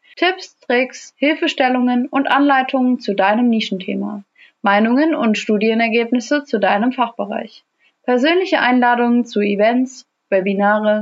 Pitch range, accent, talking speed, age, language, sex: 210-265 Hz, German, 105 wpm, 30-49, German, female